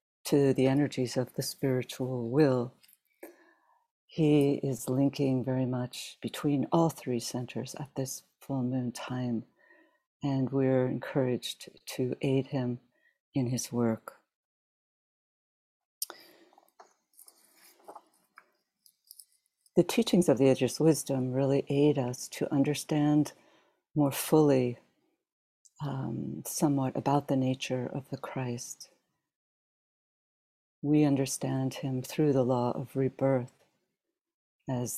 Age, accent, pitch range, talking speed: 60-79, American, 125-145 Hz, 105 wpm